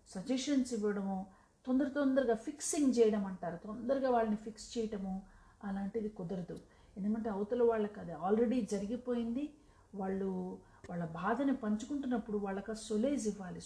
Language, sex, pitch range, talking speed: Telugu, female, 200-240 Hz, 115 wpm